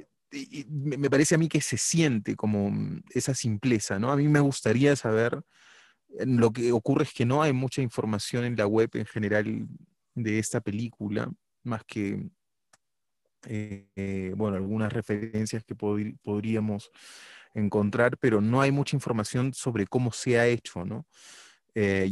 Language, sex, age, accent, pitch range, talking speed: Spanish, male, 30-49, Argentinian, 105-125 Hz, 145 wpm